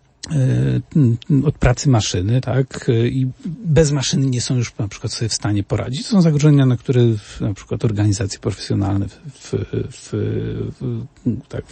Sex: male